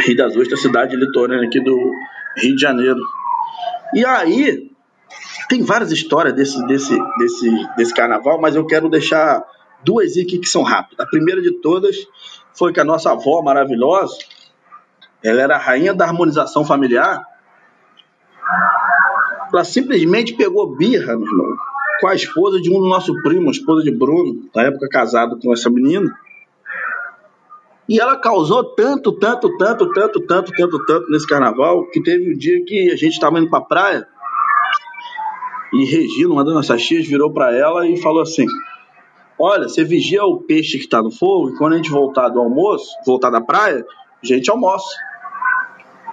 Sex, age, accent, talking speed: male, 20-39, Brazilian, 165 wpm